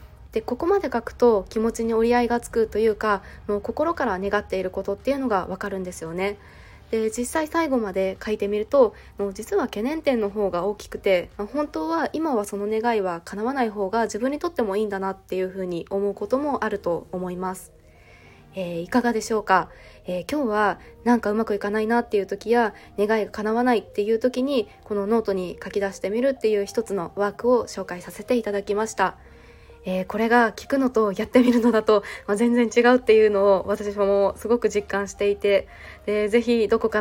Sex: female